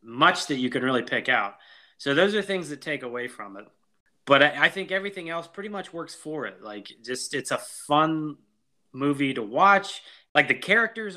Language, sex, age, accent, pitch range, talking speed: English, male, 20-39, American, 125-165 Hz, 205 wpm